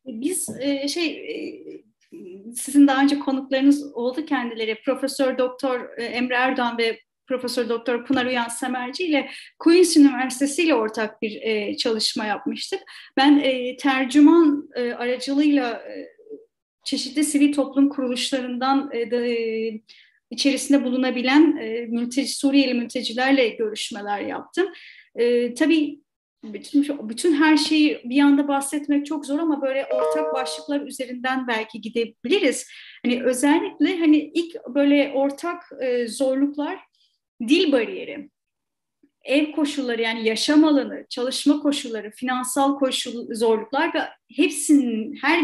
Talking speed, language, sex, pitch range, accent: 105 wpm, Turkish, female, 245-290 Hz, native